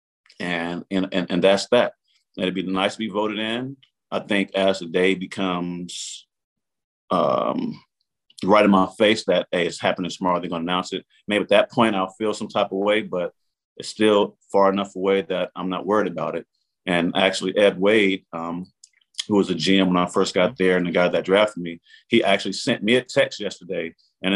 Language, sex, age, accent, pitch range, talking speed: English, male, 40-59, American, 90-100 Hz, 210 wpm